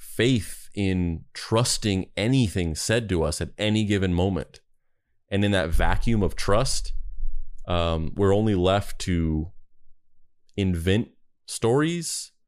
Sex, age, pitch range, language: male, 30-49, 85-105 Hz, English